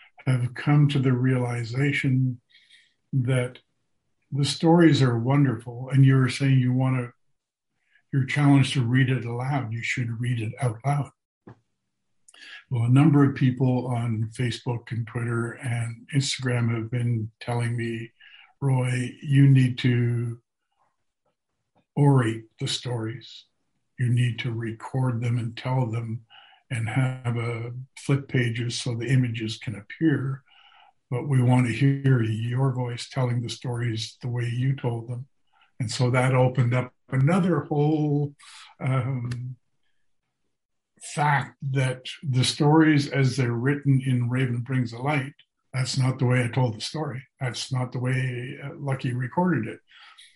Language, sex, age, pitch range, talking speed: English, male, 50-69, 120-135 Hz, 140 wpm